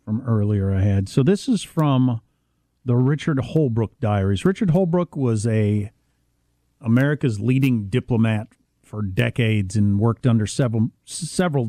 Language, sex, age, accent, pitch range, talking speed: English, male, 50-69, American, 110-155 Hz, 135 wpm